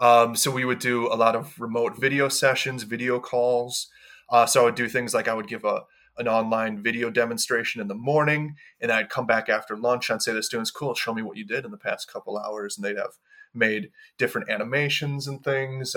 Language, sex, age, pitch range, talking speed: English, male, 20-39, 110-140 Hz, 230 wpm